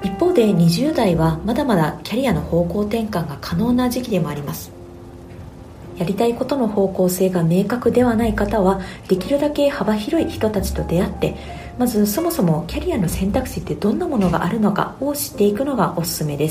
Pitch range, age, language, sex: 165-230 Hz, 40-59, Japanese, female